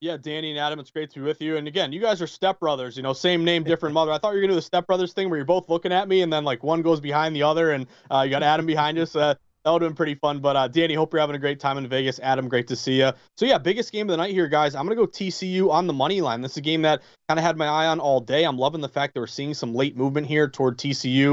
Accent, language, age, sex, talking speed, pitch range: American, English, 30-49, male, 335 wpm, 140-180 Hz